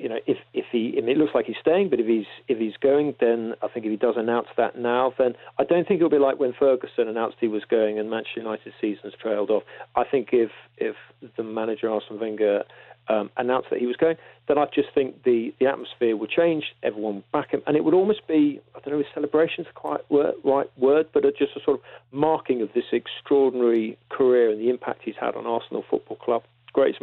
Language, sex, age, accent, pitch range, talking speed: English, male, 40-59, British, 115-140 Hz, 240 wpm